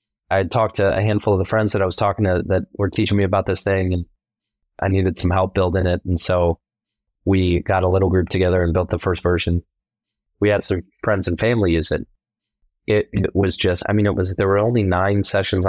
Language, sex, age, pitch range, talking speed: English, male, 20-39, 85-95 Hz, 235 wpm